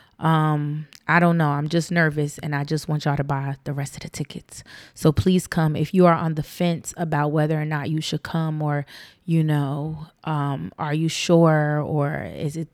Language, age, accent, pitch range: English, 20-39, American, 150-170 Hz